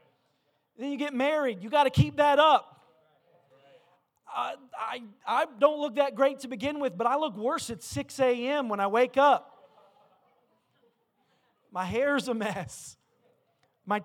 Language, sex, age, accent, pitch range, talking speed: English, male, 30-49, American, 255-320 Hz, 155 wpm